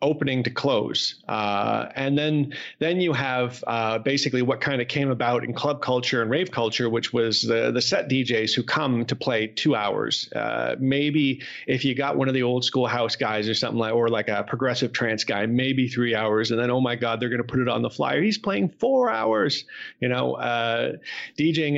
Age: 30-49